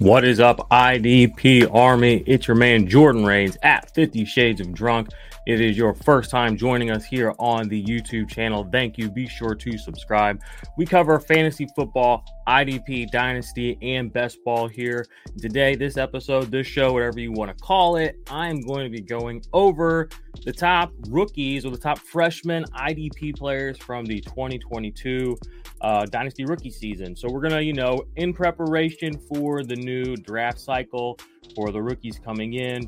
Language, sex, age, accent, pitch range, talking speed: English, male, 20-39, American, 115-145 Hz, 170 wpm